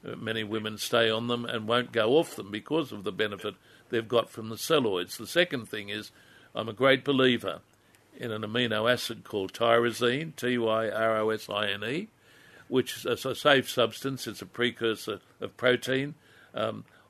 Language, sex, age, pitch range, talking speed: English, male, 60-79, 110-130 Hz, 160 wpm